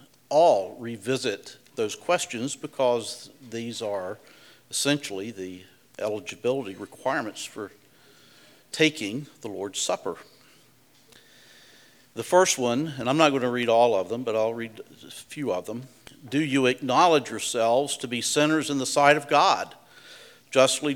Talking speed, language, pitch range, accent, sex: 135 wpm, English, 120-150 Hz, American, male